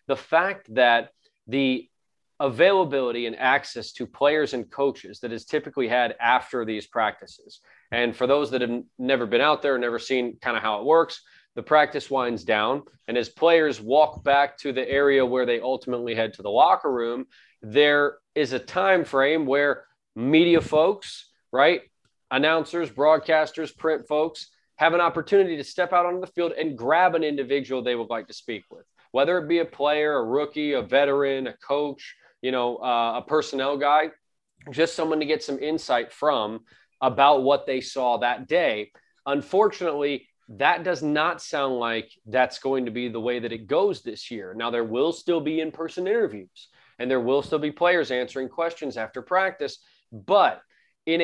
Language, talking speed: English, 180 wpm